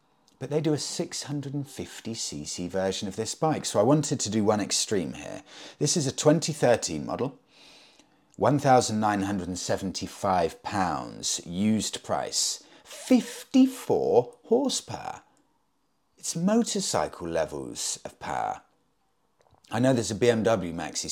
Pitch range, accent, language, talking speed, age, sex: 100-160 Hz, British, English, 110 wpm, 30-49, male